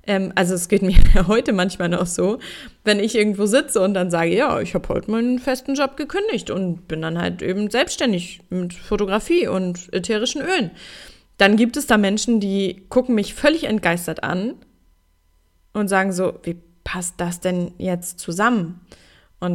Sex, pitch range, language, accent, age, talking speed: female, 180-215 Hz, German, German, 20-39, 170 wpm